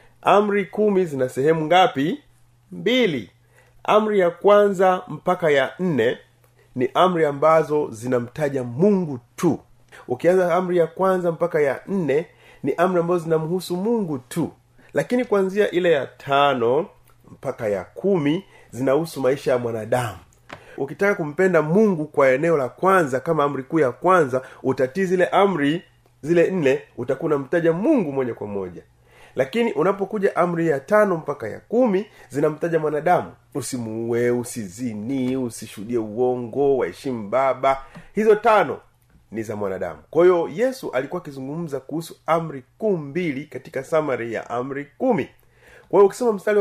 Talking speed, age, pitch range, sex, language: 135 wpm, 30-49, 130-185 Hz, male, Swahili